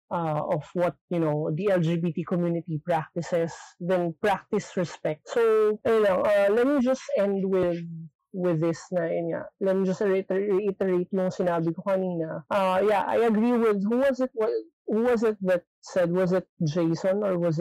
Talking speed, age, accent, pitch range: 165 wpm, 30-49, Filipino, 175-200 Hz